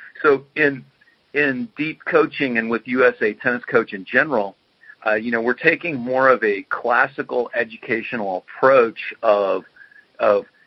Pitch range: 105-150 Hz